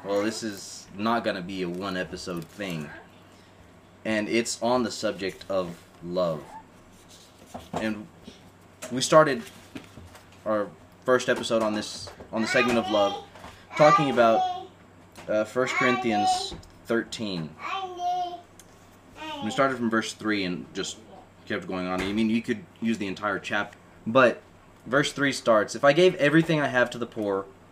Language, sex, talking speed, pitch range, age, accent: English, male, 145 wpm, 90-130 Hz, 20-39, American